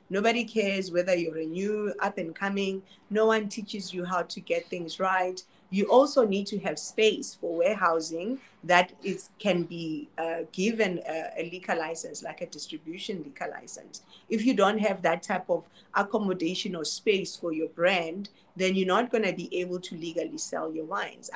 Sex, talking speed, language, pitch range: female, 185 wpm, English, 175-220 Hz